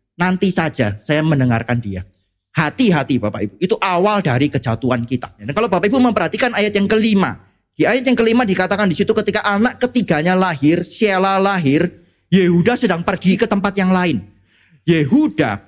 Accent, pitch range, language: native, 140-225 Hz, Indonesian